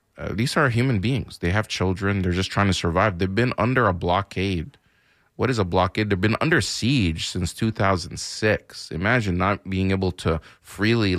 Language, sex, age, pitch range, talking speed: English, male, 30-49, 90-105 Hz, 180 wpm